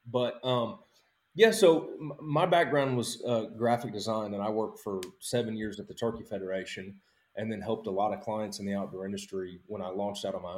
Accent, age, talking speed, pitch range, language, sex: American, 30-49, 210 wpm, 100-125 Hz, English, male